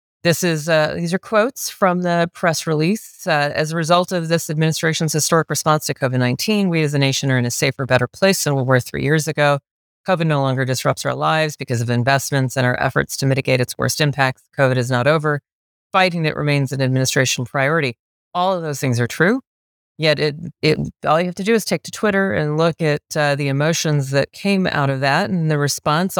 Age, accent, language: 40-59, American, English